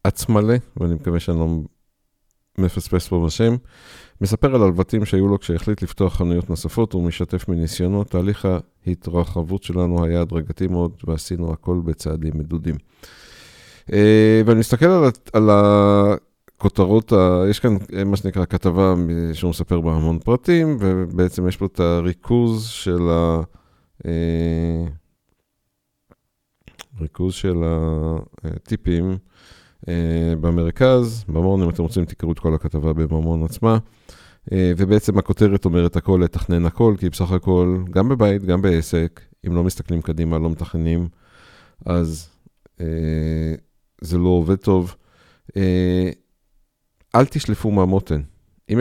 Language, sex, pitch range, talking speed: Hebrew, male, 85-100 Hz, 120 wpm